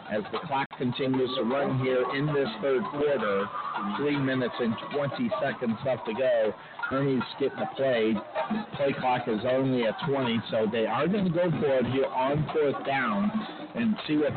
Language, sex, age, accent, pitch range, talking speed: English, male, 50-69, American, 130-160 Hz, 180 wpm